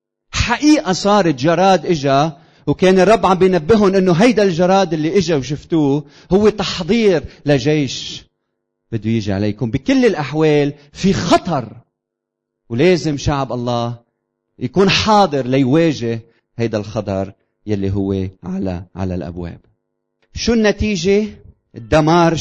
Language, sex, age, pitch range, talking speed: Arabic, male, 30-49, 120-165 Hz, 105 wpm